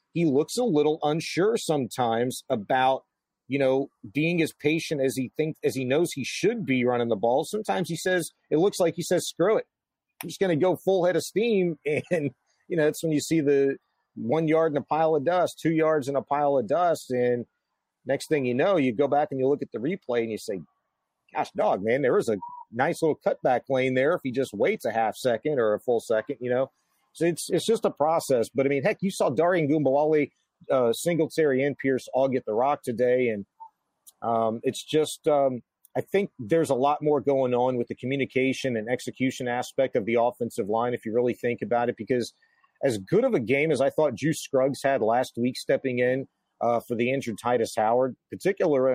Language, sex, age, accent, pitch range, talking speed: English, male, 40-59, American, 125-155 Hz, 220 wpm